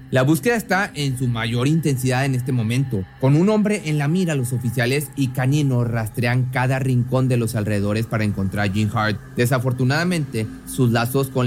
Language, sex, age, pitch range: Spanish, male, 30-49, 115-140 Hz